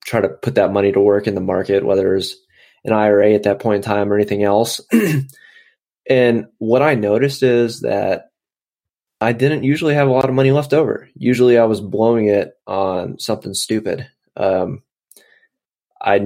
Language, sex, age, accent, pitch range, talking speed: English, male, 20-39, American, 100-115 Hz, 175 wpm